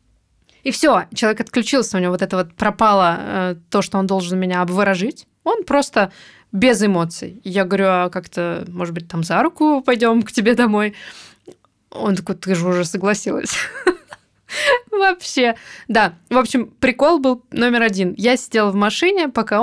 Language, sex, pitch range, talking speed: Russian, female, 195-245 Hz, 160 wpm